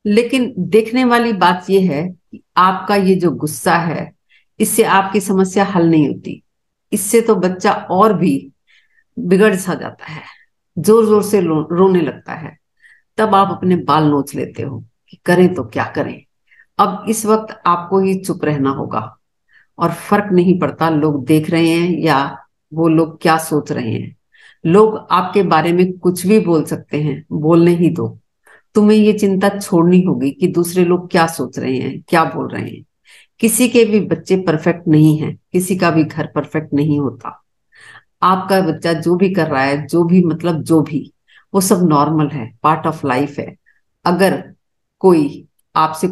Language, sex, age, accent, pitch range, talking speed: Hindi, female, 50-69, native, 155-200 Hz, 170 wpm